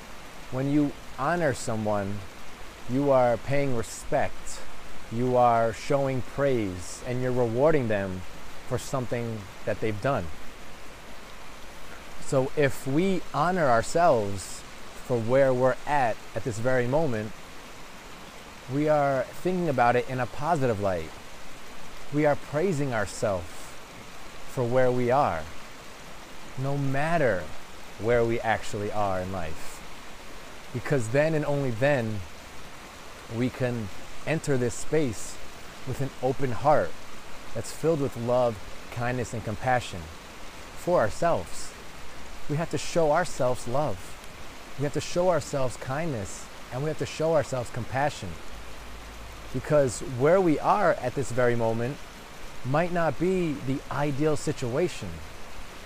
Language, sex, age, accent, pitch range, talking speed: English, male, 30-49, American, 105-145 Hz, 125 wpm